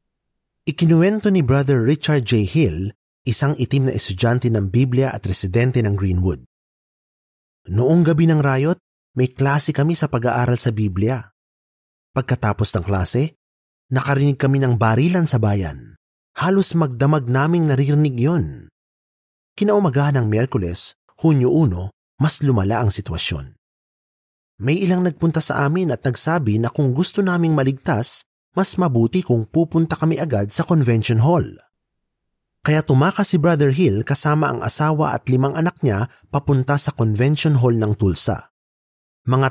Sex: male